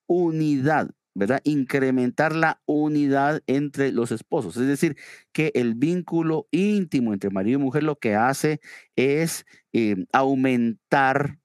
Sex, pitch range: male, 110-150 Hz